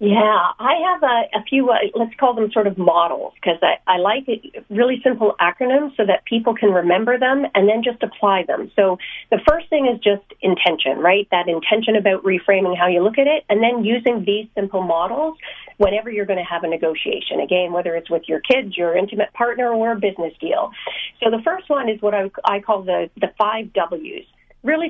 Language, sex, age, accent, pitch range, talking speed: English, female, 40-59, American, 195-265 Hz, 210 wpm